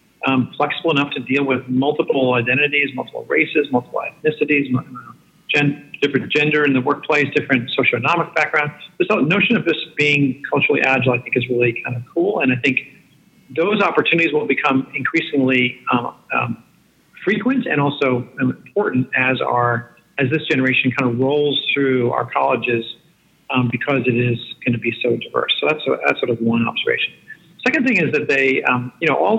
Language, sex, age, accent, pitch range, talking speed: English, male, 50-69, American, 125-155 Hz, 175 wpm